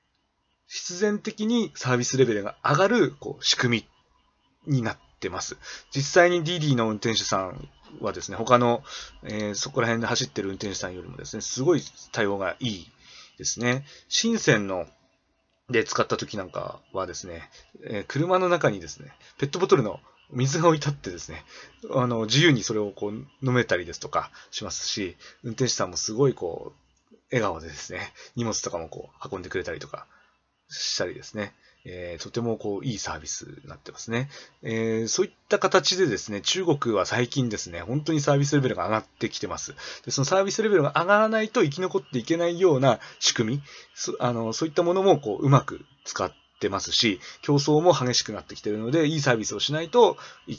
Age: 30-49